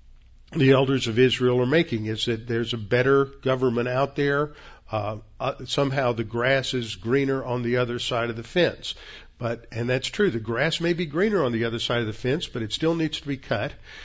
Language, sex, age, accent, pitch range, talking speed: English, male, 50-69, American, 115-140 Hz, 220 wpm